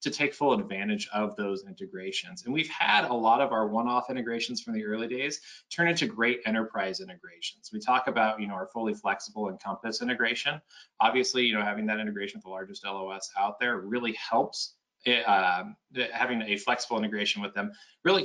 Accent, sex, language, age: American, male, English, 20-39